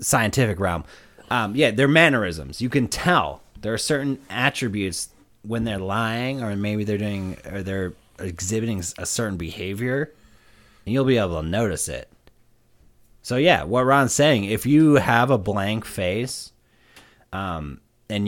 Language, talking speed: English, 150 wpm